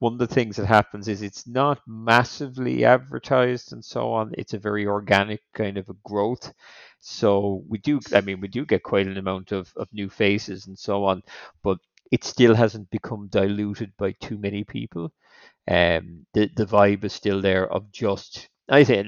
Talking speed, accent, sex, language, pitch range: 195 wpm, Irish, male, English, 95-110 Hz